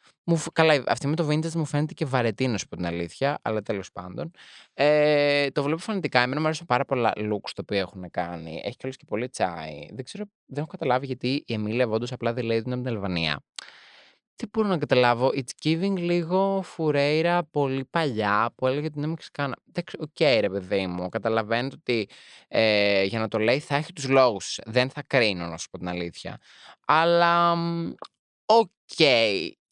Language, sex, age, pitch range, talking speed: Greek, male, 20-39, 105-155 Hz, 180 wpm